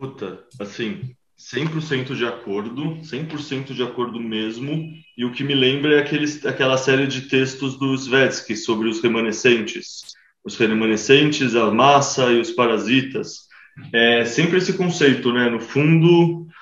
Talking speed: 140 wpm